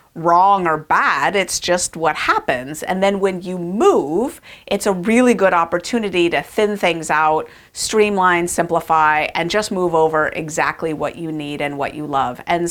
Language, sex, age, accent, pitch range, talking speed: English, female, 40-59, American, 160-210 Hz, 170 wpm